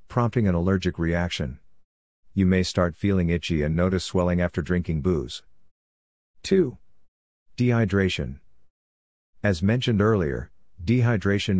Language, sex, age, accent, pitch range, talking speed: English, male, 50-69, American, 80-100 Hz, 110 wpm